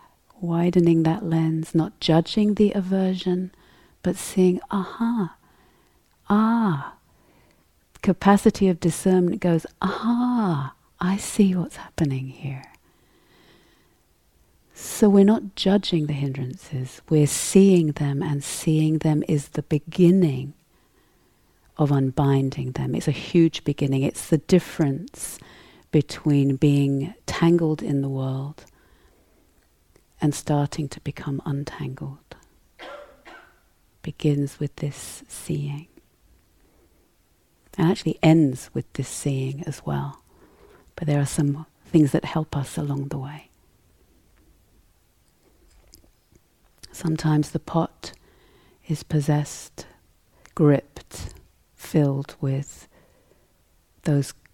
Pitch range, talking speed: 140-170 Hz, 100 wpm